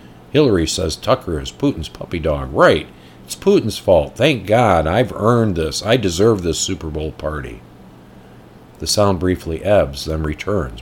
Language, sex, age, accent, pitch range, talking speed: English, male, 50-69, American, 65-100 Hz, 155 wpm